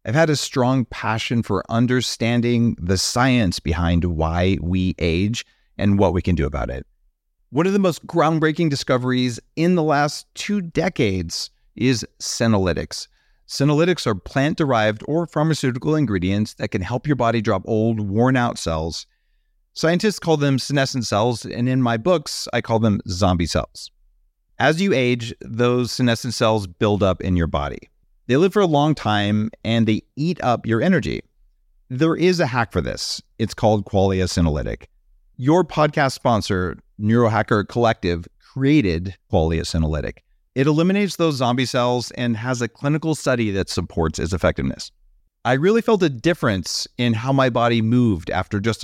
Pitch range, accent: 95-135 Hz, American